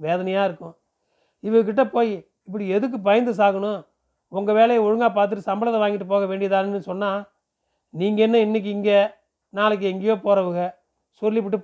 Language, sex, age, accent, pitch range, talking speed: Tamil, male, 40-59, native, 190-220 Hz, 130 wpm